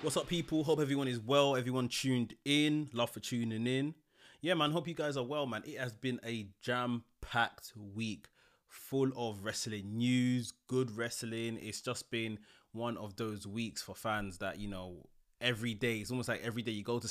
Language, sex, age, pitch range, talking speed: English, male, 20-39, 105-125 Hz, 195 wpm